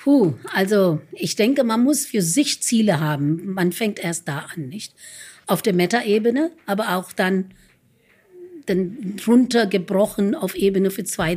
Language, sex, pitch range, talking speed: German, female, 175-230 Hz, 145 wpm